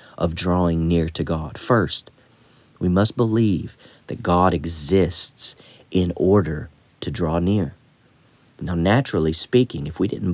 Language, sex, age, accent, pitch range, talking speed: English, male, 40-59, American, 85-110 Hz, 135 wpm